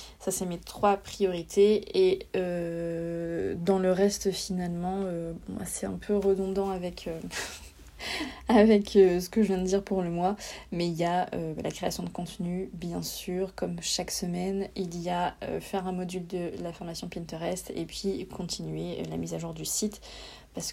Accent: French